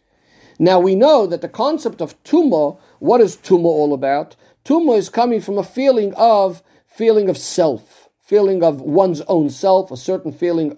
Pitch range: 165-225 Hz